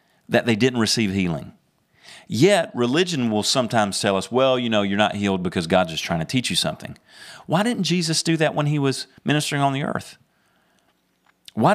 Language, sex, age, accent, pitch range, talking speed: English, male, 40-59, American, 115-160 Hz, 195 wpm